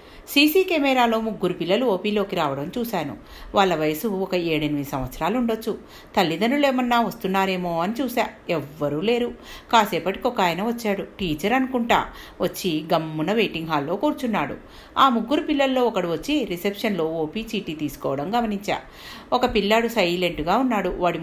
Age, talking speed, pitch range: 50-69, 135 wpm, 155-230 Hz